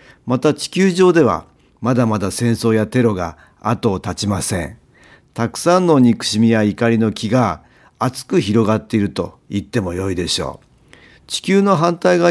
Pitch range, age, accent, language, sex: 100-135 Hz, 50-69, native, Japanese, male